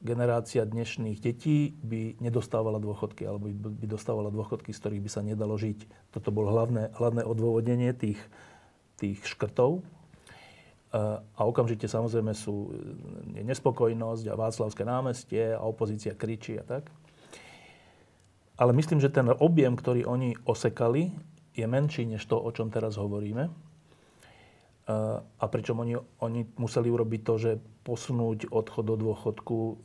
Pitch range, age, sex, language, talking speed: 110-130 Hz, 40-59, male, Slovak, 130 wpm